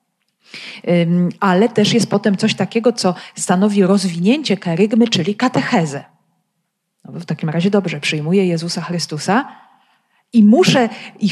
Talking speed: 120 wpm